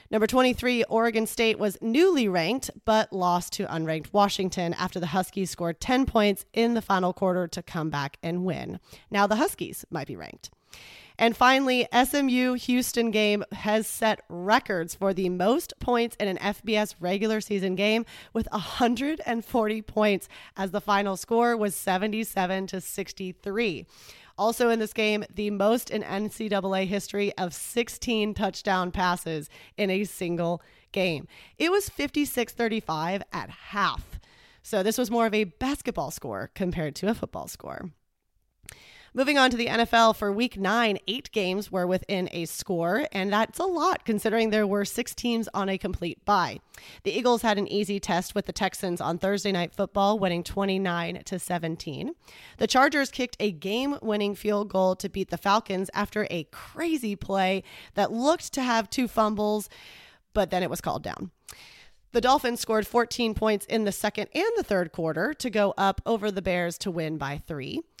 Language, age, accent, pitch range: English, 30-49, American, 190-230 Hz